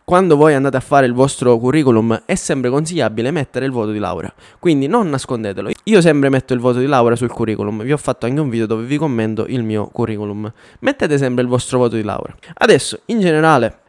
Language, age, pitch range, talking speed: Italian, 10-29, 120-155 Hz, 215 wpm